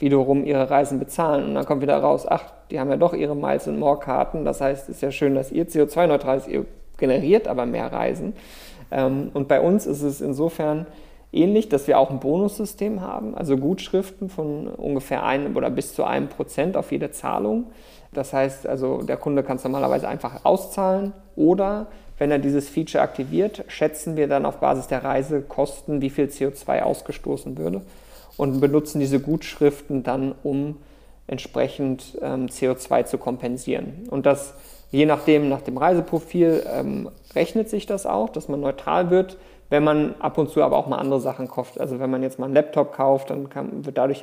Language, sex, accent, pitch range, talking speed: German, male, German, 135-155 Hz, 185 wpm